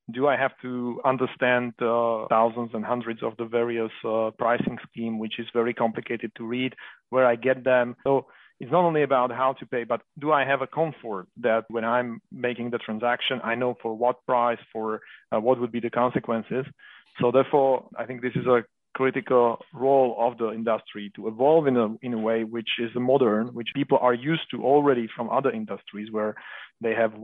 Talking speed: 205 wpm